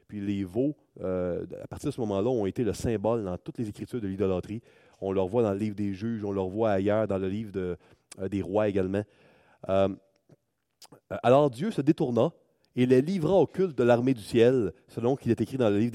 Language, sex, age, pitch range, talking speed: French, male, 30-49, 100-135 Hz, 220 wpm